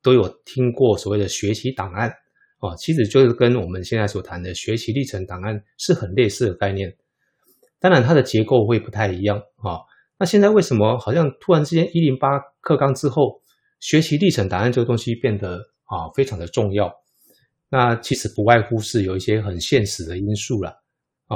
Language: Chinese